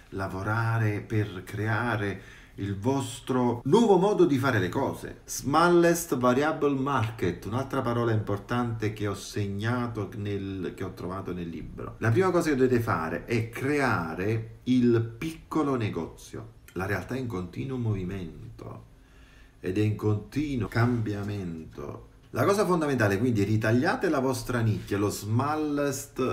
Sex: male